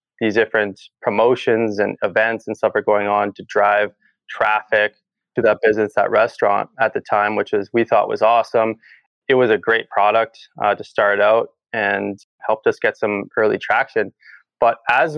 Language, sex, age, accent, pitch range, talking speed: English, male, 20-39, American, 105-125 Hz, 180 wpm